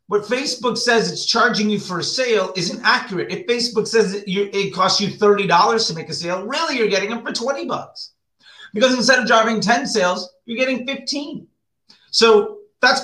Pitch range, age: 170-230 Hz, 30-49